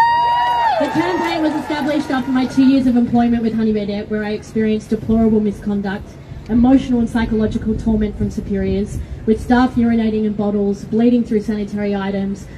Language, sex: English, female